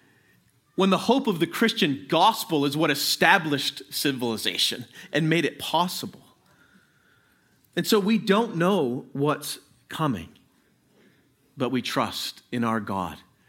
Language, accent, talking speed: English, American, 125 wpm